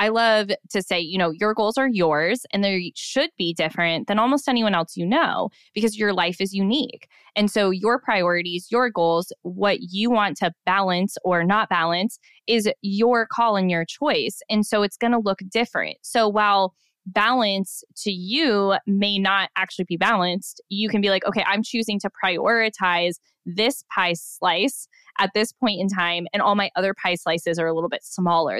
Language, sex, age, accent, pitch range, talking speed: English, female, 20-39, American, 185-230 Hz, 190 wpm